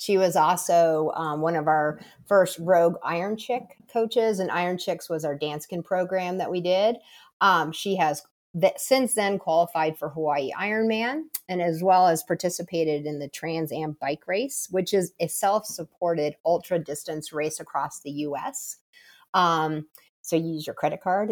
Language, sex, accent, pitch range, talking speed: English, female, American, 160-195 Hz, 165 wpm